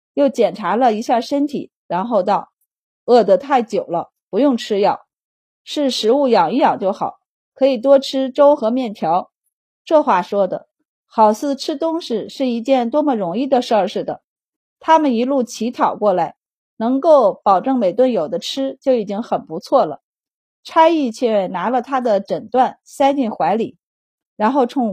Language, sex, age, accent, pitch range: Chinese, female, 30-49, native, 225-285 Hz